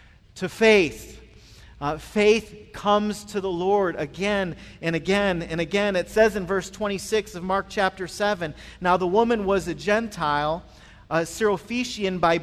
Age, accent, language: 40-59, American, English